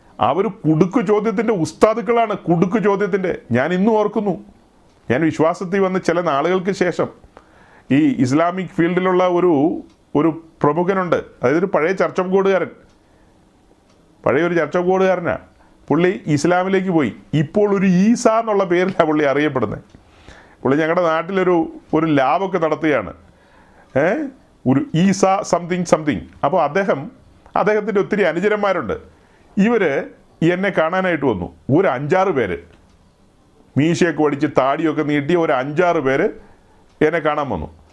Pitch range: 160-205 Hz